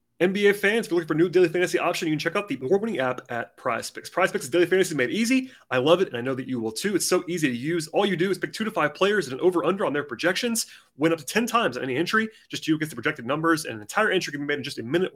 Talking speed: 320 wpm